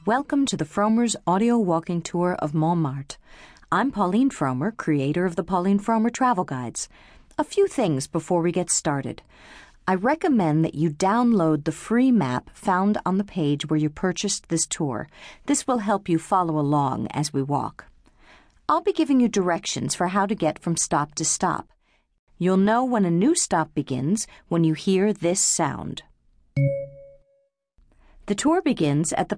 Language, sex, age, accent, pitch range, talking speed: English, female, 50-69, American, 155-220 Hz, 170 wpm